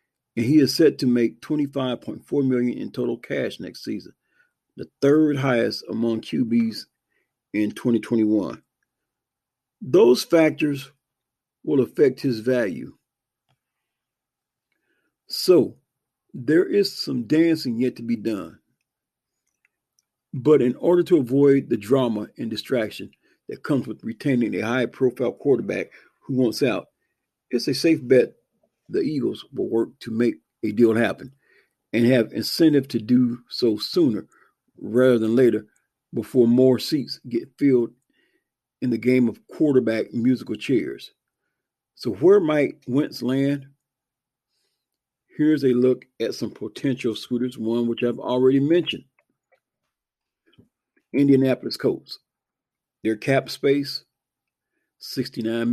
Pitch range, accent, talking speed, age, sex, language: 120-140 Hz, American, 120 wpm, 50-69, male, English